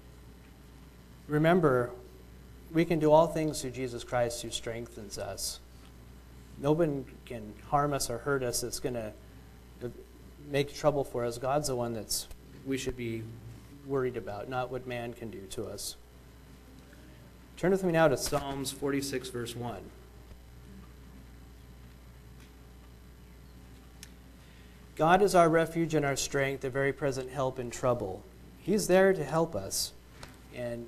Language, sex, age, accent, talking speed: English, male, 30-49, American, 135 wpm